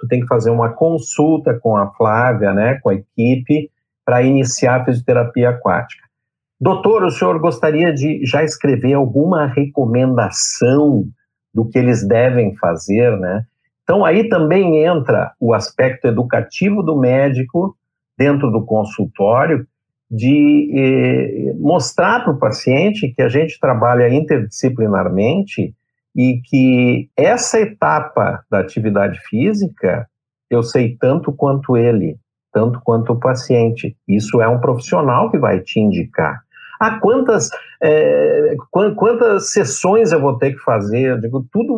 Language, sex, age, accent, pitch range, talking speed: Portuguese, male, 50-69, Brazilian, 120-155 Hz, 130 wpm